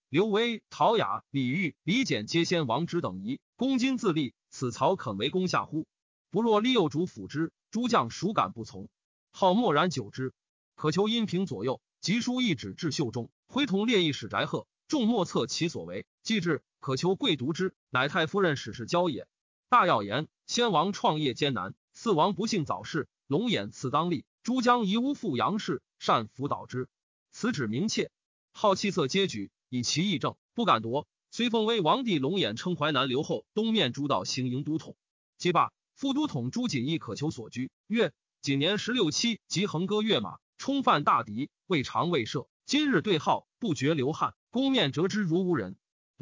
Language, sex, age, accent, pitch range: Chinese, male, 30-49, native, 145-215 Hz